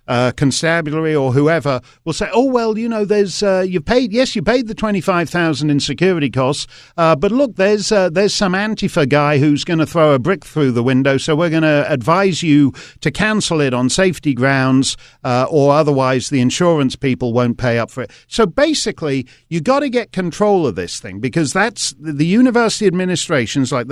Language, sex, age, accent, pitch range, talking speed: English, male, 50-69, British, 130-180 Hz, 200 wpm